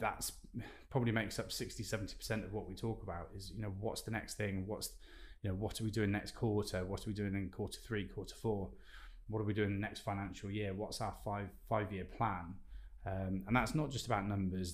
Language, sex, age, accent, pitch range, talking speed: English, male, 20-39, British, 95-110 Hz, 235 wpm